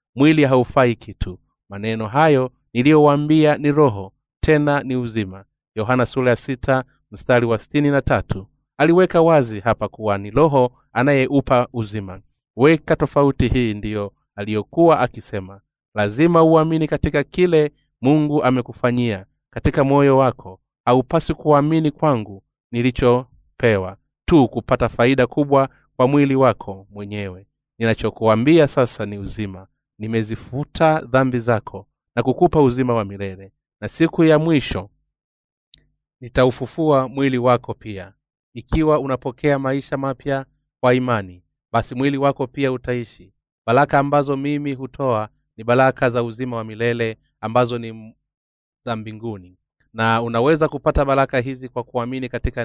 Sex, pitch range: male, 110-145 Hz